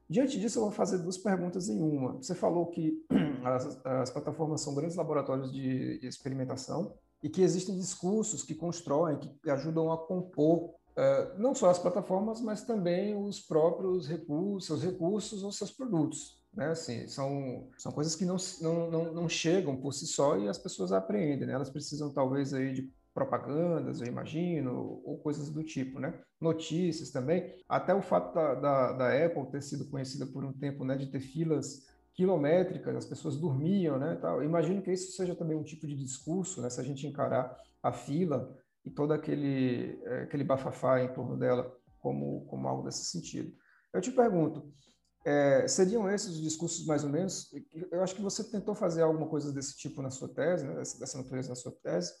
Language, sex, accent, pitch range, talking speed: Portuguese, male, Brazilian, 135-180 Hz, 185 wpm